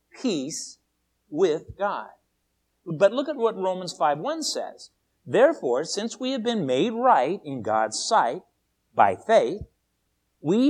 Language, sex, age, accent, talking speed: English, male, 50-69, American, 130 wpm